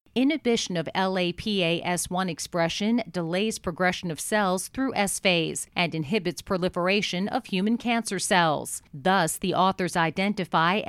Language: English